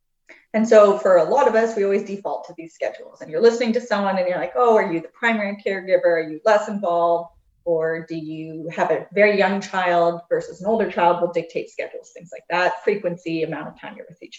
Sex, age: female, 30-49